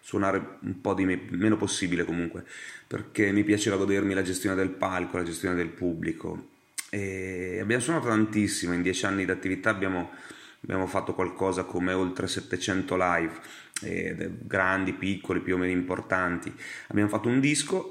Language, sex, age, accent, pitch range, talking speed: Italian, male, 30-49, native, 90-105 Hz, 155 wpm